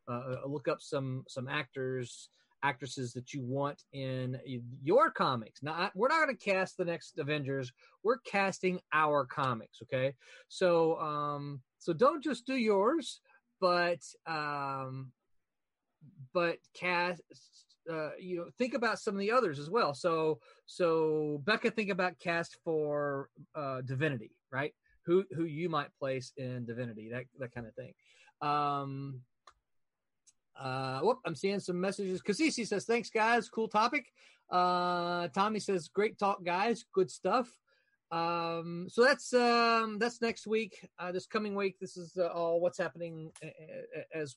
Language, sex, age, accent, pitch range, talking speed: English, male, 30-49, American, 145-200 Hz, 150 wpm